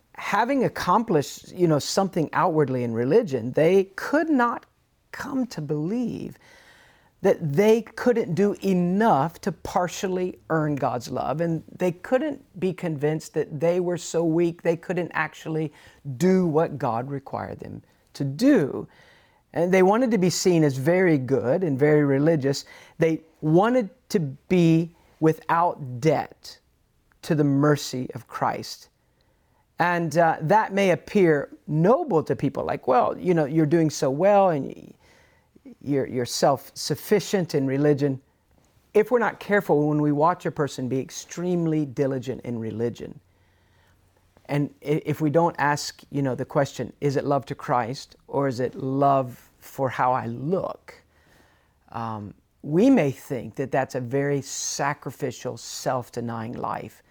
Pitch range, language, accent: 135-180 Hz, English, American